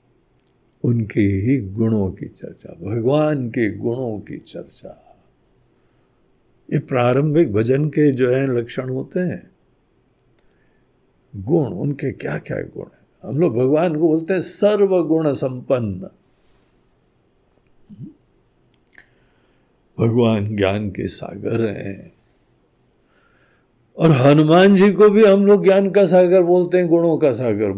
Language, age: Hindi, 60-79